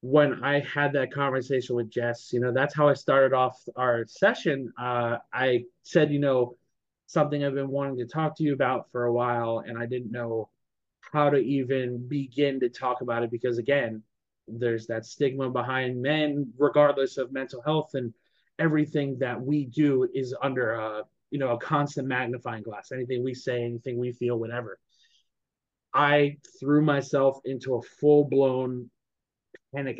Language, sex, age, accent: English, male, 30-49, American